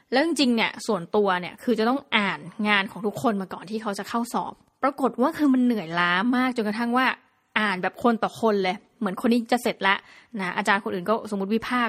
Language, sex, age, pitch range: Thai, female, 20-39, 195-235 Hz